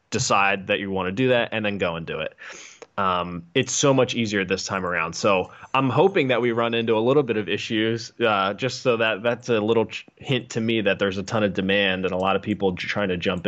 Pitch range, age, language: 95-120 Hz, 20-39, English